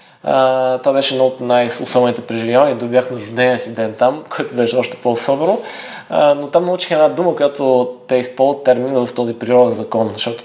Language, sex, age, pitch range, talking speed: Bulgarian, male, 20-39, 120-150 Hz, 180 wpm